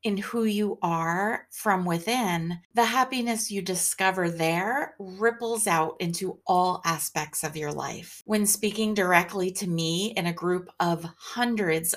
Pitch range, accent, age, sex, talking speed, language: 165-205 Hz, American, 30-49, female, 145 wpm, English